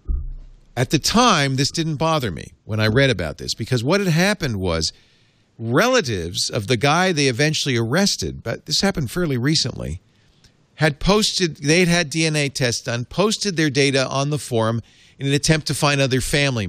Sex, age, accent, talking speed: male, 50-69, American, 180 wpm